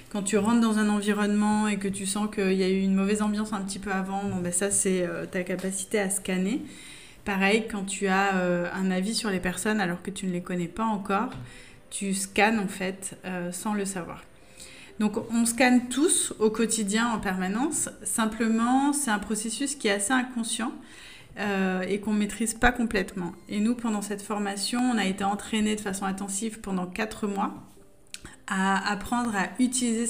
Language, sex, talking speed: French, female, 185 wpm